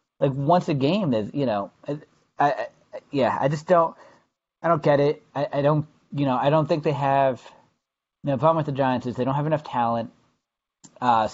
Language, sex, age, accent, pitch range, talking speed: English, male, 30-49, American, 110-145 Hz, 210 wpm